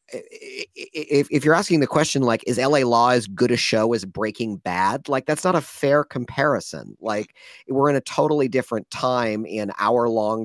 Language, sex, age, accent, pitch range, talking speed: English, male, 40-59, American, 115-155 Hz, 190 wpm